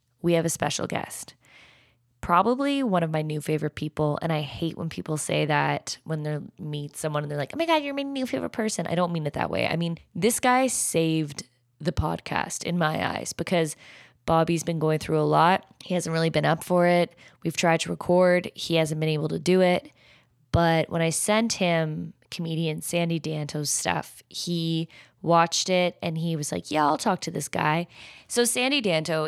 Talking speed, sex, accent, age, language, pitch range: 205 wpm, female, American, 20-39, English, 150-180 Hz